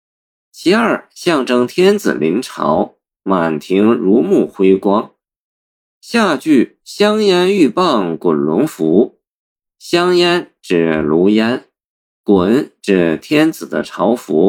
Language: Chinese